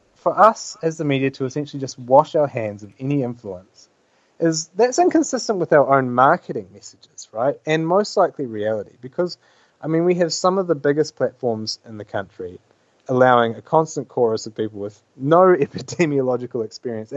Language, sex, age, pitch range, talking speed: English, male, 30-49, 110-160 Hz, 175 wpm